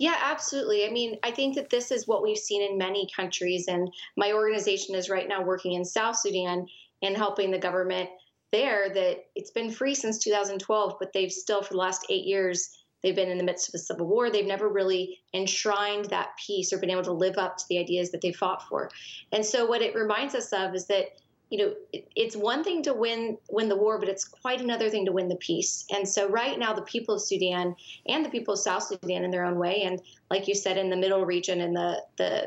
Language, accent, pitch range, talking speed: English, American, 180-210 Hz, 240 wpm